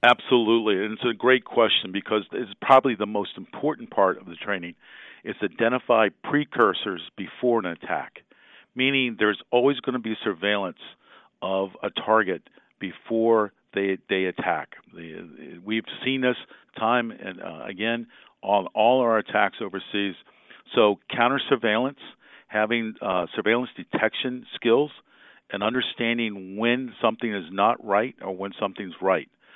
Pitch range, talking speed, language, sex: 100-120 Hz, 135 wpm, English, male